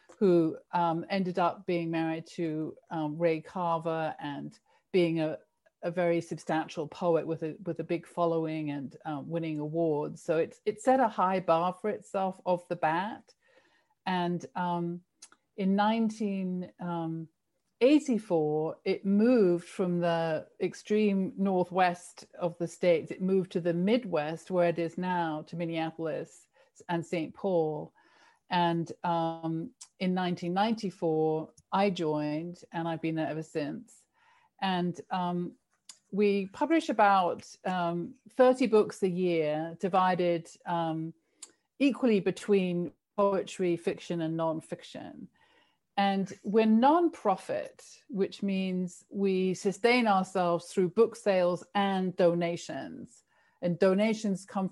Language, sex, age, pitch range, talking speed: Turkish, female, 50-69, 165-200 Hz, 125 wpm